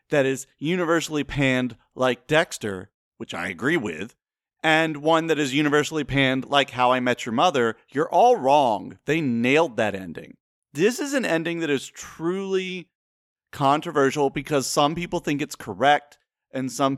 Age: 30-49